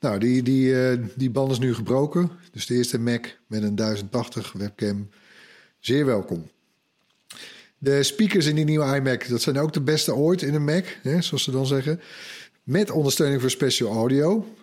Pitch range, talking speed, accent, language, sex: 115-155 Hz, 175 wpm, Dutch, Dutch, male